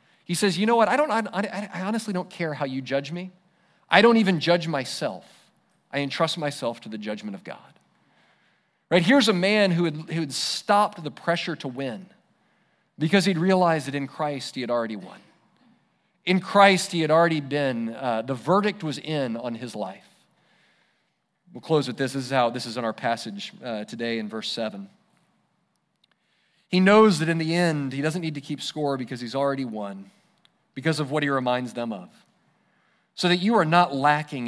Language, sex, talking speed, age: English, male, 195 wpm, 40-59